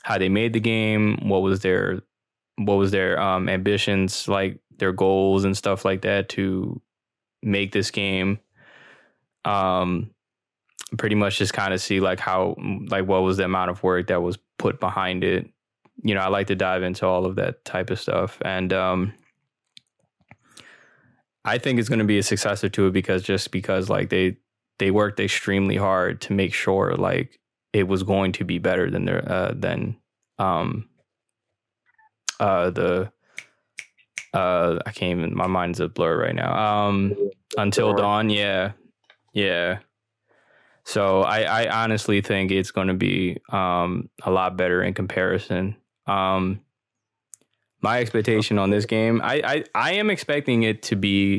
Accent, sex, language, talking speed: American, male, English, 165 wpm